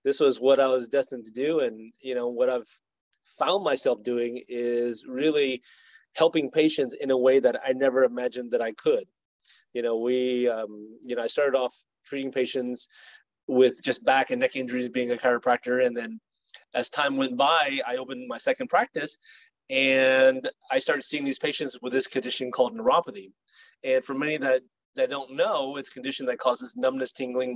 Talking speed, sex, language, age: 190 wpm, male, English, 30-49